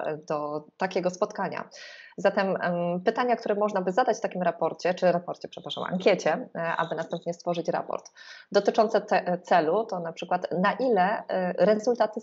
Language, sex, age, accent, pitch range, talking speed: Polish, female, 20-39, native, 170-205 Hz, 135 wpm